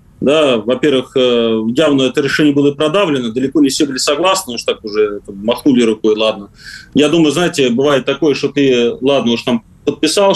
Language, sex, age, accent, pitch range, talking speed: Russian, male, 30-49, native, 120-175 Hz, 170 wpm